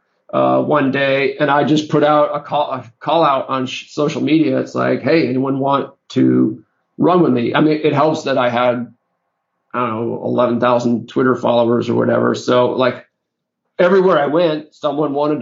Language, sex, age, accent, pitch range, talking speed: English, male, 40-59, American, 125-155 Hz, 190 wpm